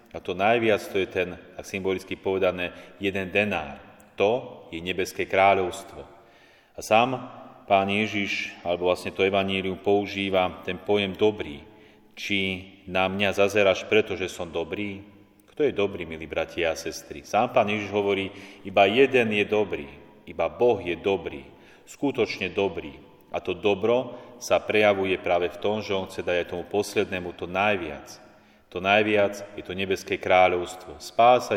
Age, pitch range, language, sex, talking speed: 30-49, 95-105 Hz, Slovak, male, 150 wpm